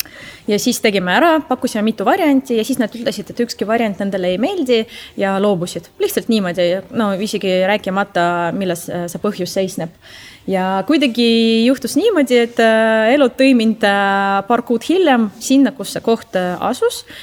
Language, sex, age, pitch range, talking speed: English, female, 20-39, 180-235 Hz, 150 wpm